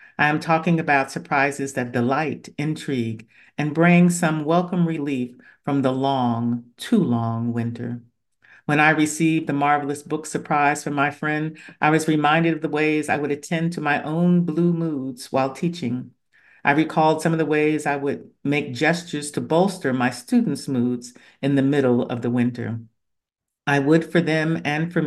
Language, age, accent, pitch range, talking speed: English, 50-69, American, 125-160 Hz, 170 wpm